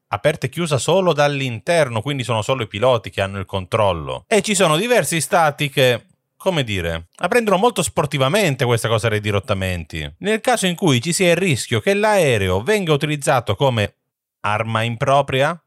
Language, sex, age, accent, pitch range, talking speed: Italian, male, 30-49, native, 105-155 Hz, 170 wpm